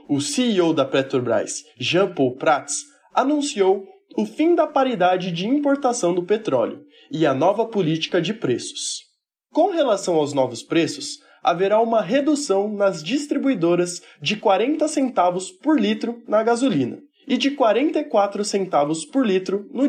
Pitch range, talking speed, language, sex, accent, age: 175-275 Hz, 135 wpm, Portuguese, male, Brazilian, 20-39